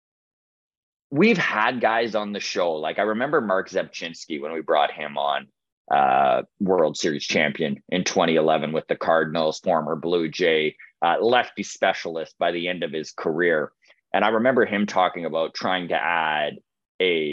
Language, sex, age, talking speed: English, male, 30-49, 165 wpm